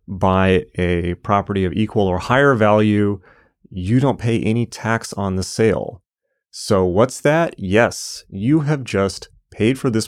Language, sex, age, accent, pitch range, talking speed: English, male, 30-49, American, 90-115 Hz, 155 wpm